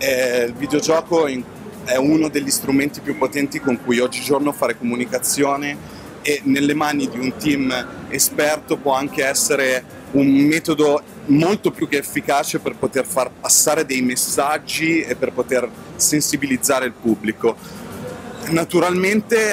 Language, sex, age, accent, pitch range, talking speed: Italian, male, 30-49, native, 130-155 Hz, 130 wpm